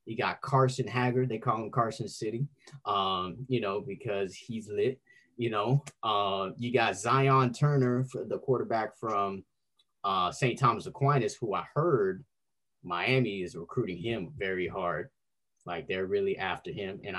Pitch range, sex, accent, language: 115-140 Hz, male, American, English